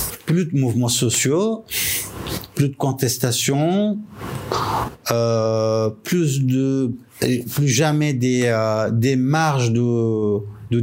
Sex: male